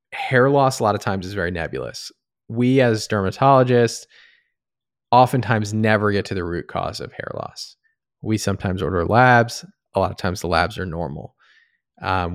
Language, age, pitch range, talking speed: English, 20-39, 95-125 Hz, 170 wpm